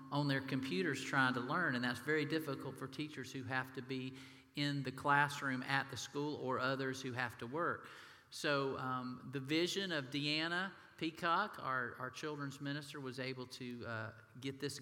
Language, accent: English, American